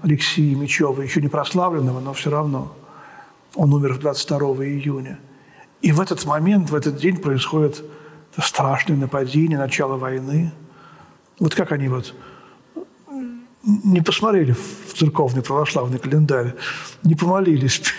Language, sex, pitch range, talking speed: Russian, male, 150-185 Hz, 120 wpm